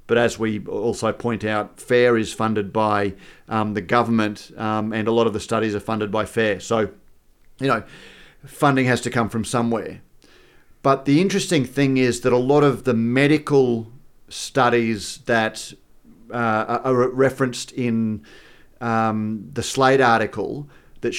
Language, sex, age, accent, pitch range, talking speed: English, male, 40-59, Australian, 110-130 Hz, 155 wpm